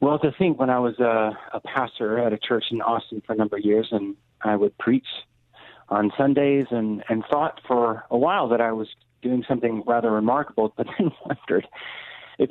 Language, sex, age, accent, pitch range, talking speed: English, male, 40-59, American, 110-125 Hz, 200 wpm